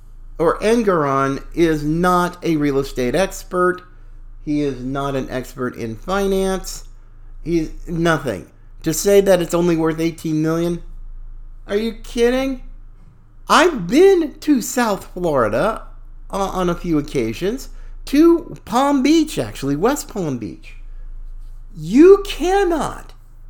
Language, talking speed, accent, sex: English, 120 wpm, American, male